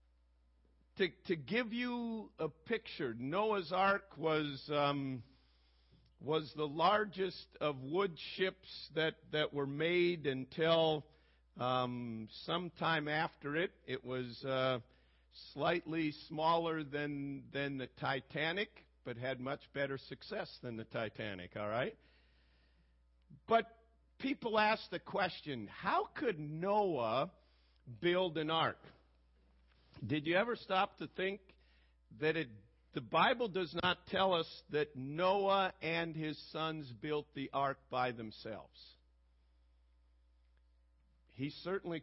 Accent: American